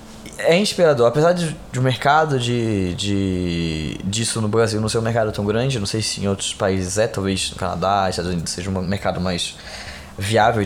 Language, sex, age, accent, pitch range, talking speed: Portuguese, male, 20-39, Brazilian, 95-135 Hz, 195 wpm